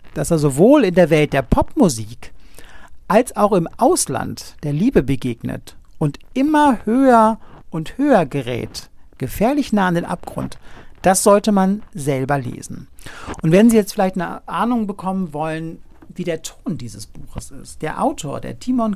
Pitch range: 155-220 Hz